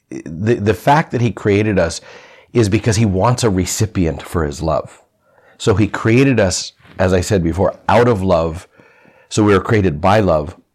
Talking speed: 185 wpm